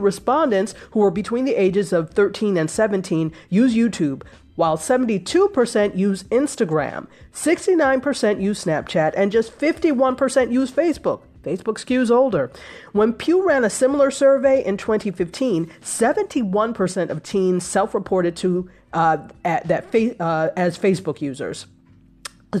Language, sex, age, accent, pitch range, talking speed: English, female, 30-49, American, 175-250 Hz, 125 wpm